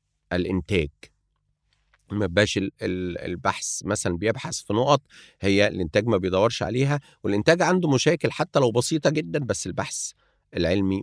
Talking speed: 115 wpm